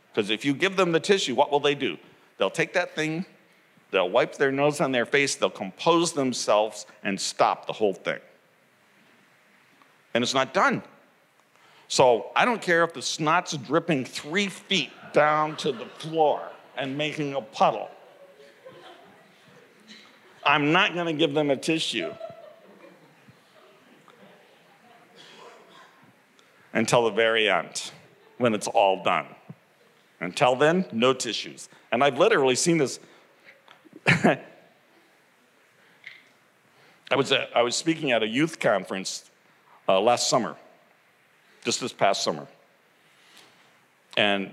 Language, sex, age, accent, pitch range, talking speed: English, male, 50-69, American, 115-165 Hz, 125 wpm